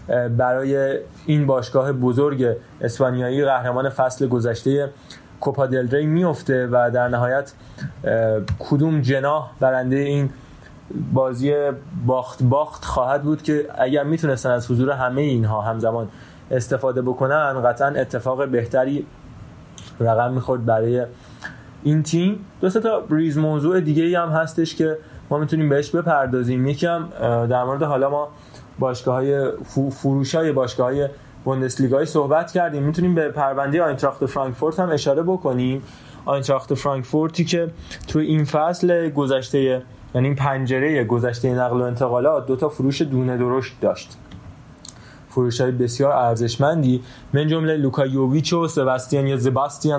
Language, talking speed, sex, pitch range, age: Persian, 125 wpm, male, 125-155 Hz, 20-39